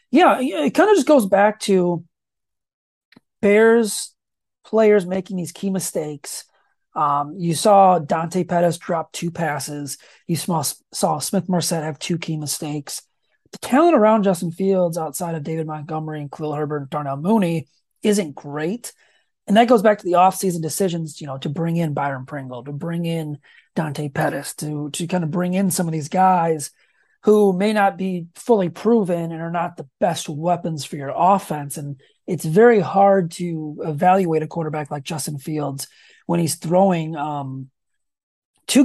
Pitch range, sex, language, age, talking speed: 150-185 Hz, male, English, 30-49, 165 wpm